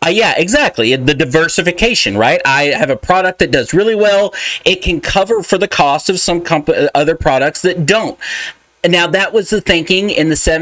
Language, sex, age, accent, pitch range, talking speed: English, male, 40-59, American, 145-185 Hz, 185 wpm